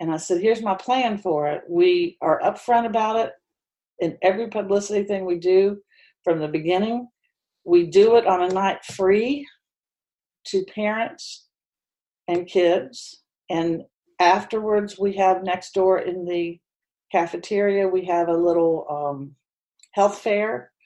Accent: American